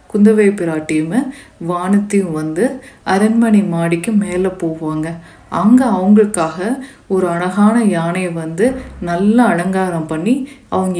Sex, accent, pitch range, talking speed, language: female, native, 175-210 Hz, 100 wpm, Tamil